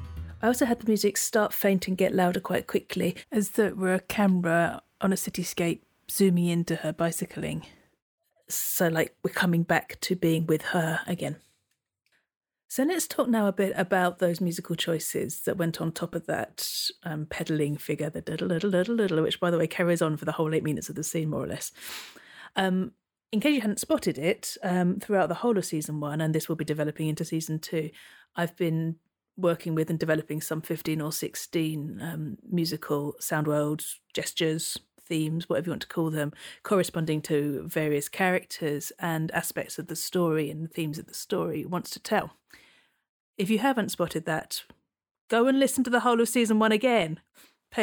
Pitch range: 160-210 Hz